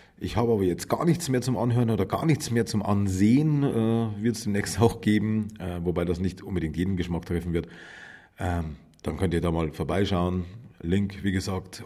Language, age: German, 40-59